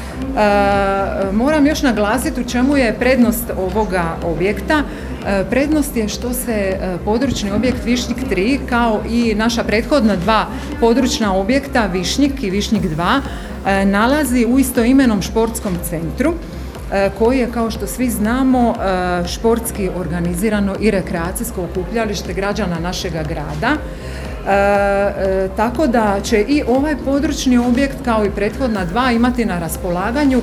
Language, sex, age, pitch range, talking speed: Croatian, female, 40-59, 195-245 Hz, 120 wpm